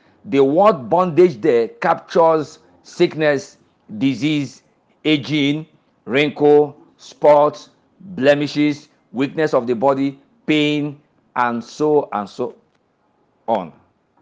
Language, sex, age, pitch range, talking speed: English, male, 50-69, 140-200 Hz, 90 wpm